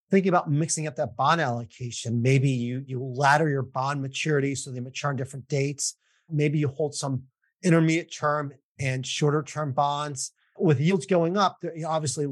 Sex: male